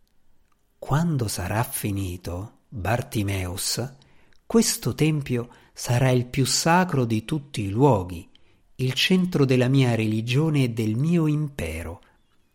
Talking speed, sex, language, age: 110 wpm, male, Italian, 50-69